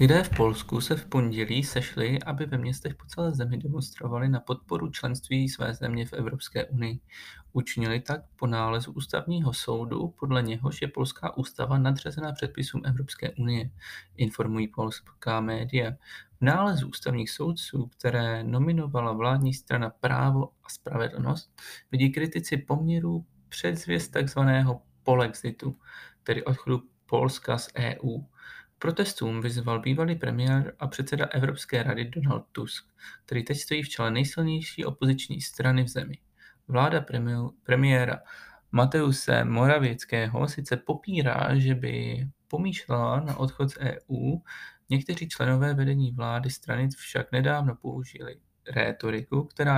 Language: Czech